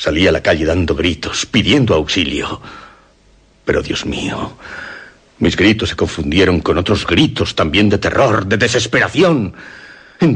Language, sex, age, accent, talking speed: Spanish, male, 60-79, Spanish, 140 wpm